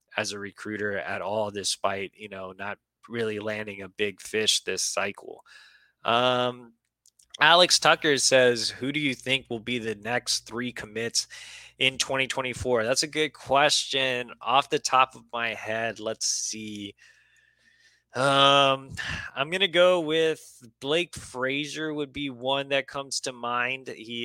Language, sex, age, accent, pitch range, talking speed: English, male, 20-39, American, 110-130 Hz, 150 wpm